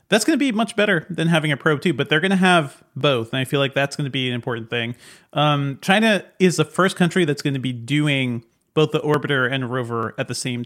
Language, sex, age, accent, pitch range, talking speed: English, male, 30-49, American, 130-160 Hz, 265 wpm